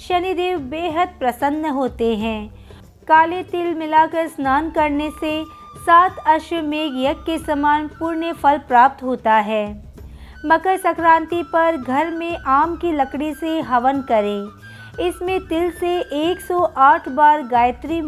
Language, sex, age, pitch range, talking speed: Hindi, female, 50-69, 260-325 Hz, 125 wpm